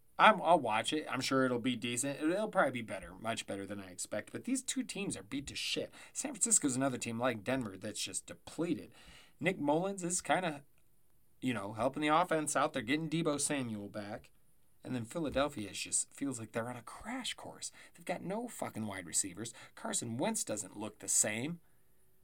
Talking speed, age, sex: 195 wpm, 30-49, male